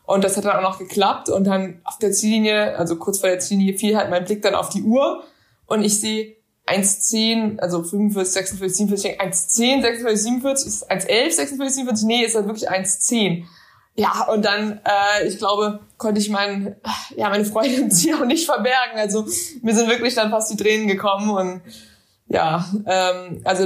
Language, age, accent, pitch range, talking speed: German, 20-39, German, 190-220 Hz, 190 wpm